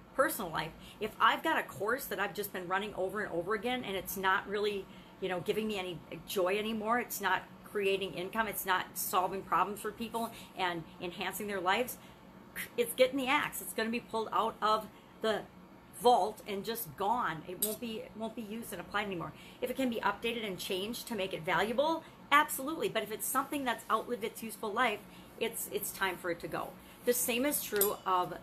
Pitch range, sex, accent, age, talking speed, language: 185-230 Hz, female, American, 40-59, 210 wpm, English